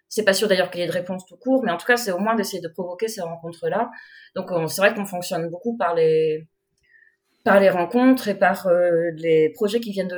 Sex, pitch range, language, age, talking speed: female, 170-210 Hz, French, 30-49, 240 wpm